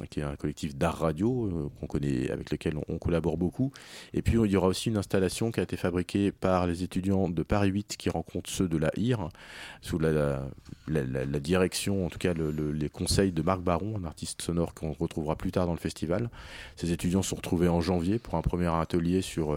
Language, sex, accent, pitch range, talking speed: French, male, French, 80-95 Hz, 235 wpm